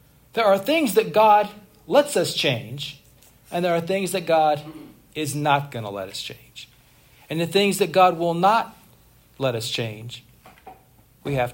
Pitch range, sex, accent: 135-180 Hz, male, American